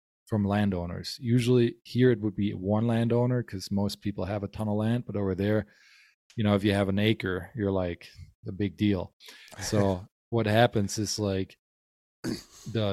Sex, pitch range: male, 95-110 Hz